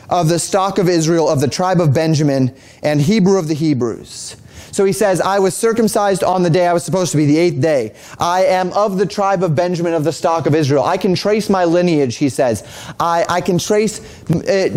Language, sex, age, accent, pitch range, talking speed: English, male, 30-49, American, 150-195 Hz, 230 wpm